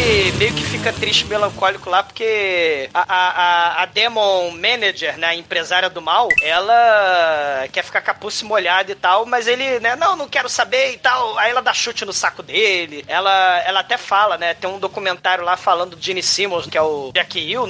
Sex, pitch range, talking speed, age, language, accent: male, 180-240 Hz, 200 wpm, 20-39, Portuguese, Brazilian